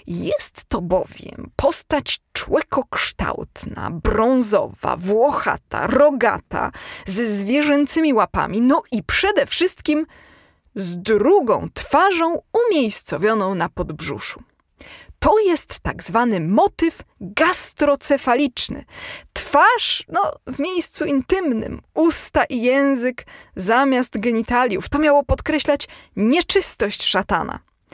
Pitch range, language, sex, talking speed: 215-300 Hz, Polish, female, 90 wpm